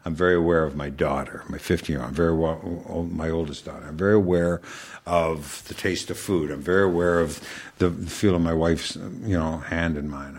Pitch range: 80-100 Hz